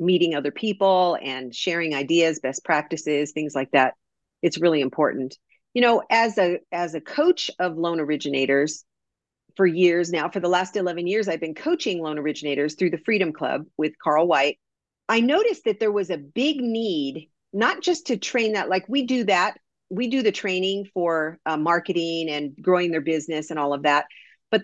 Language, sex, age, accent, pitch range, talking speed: English, female, 50-69, American, 160-215 Hz, 190 wpm